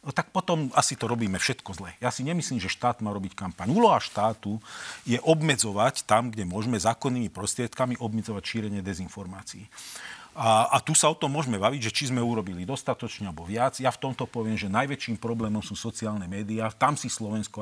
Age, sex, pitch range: 40-59, male, 105-135 Hz